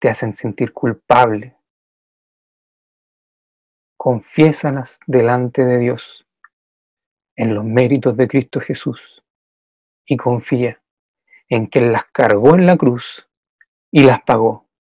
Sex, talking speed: male, 110 wpm